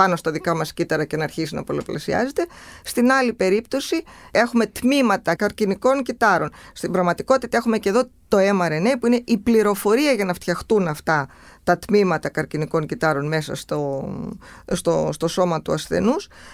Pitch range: 175-245 Hz